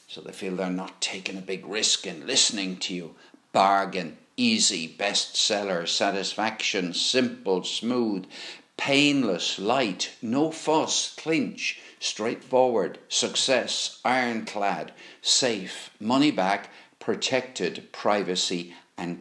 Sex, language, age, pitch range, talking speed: male, English, 60-79, 95-120 Hz, 105 wpm